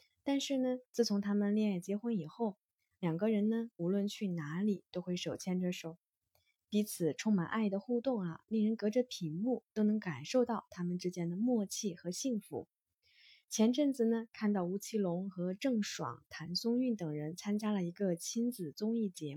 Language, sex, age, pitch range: Chinese, female, 20-39, 175-235 Hz